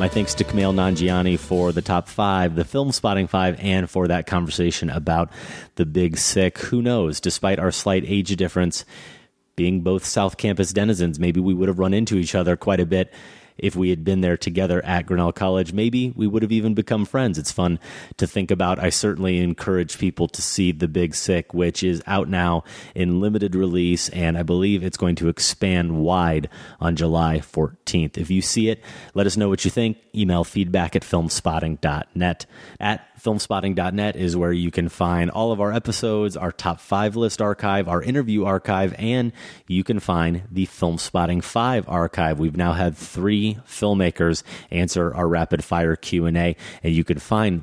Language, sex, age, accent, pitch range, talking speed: English, male, 30-49, American, 85-100 Hz, 185 wpm